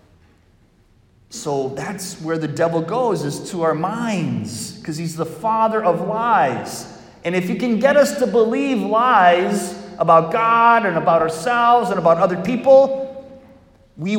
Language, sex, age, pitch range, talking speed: English, male, 30-49, 130-205 Hz, 150 wpm